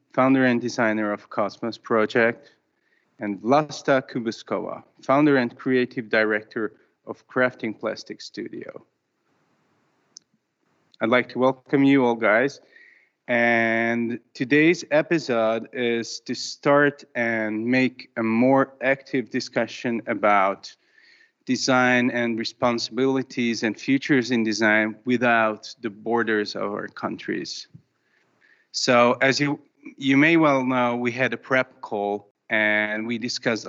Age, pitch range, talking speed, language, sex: 30-49, 115-145 Hz, 115 wpm, Hungarian, male